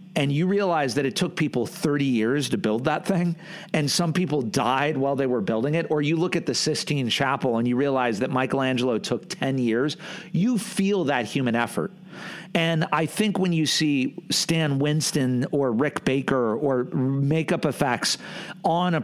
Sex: male